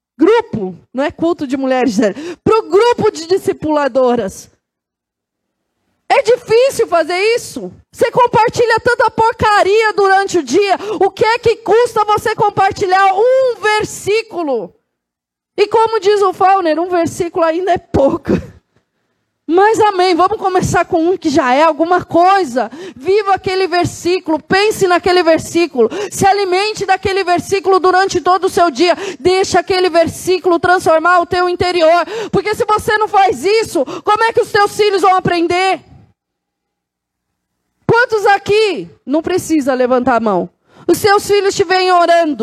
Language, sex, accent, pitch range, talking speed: Portuguese, female, Brazilian, 325-400 Hz, 145 wpm